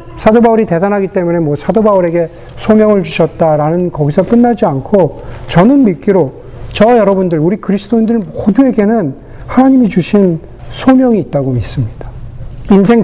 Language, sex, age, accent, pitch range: Korean, male, 40-59, native, 130-215 Hz